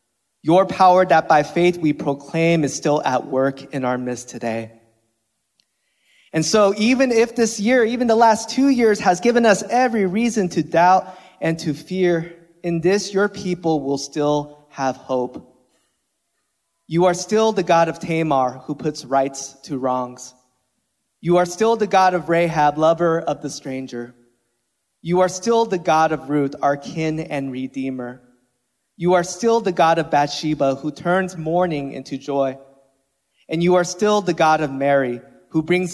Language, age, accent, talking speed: English, 30-49, American, 165 wpm